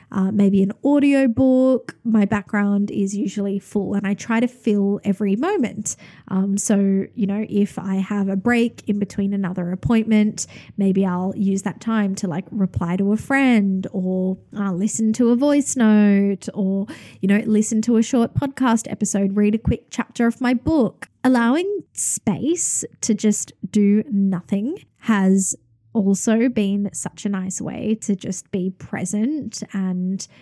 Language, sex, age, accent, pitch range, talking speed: English, female, 10-29, Australian, 195-225 Hz, 160 wpm